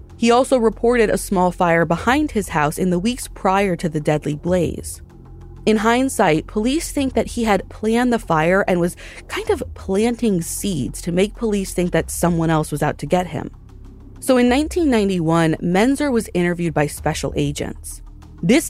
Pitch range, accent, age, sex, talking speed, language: 155-215 Hz, American, 30-49, female, 175 wpm, English